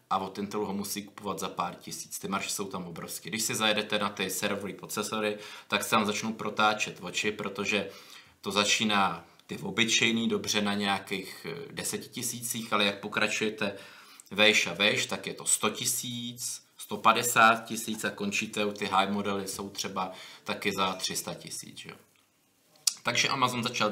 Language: Czech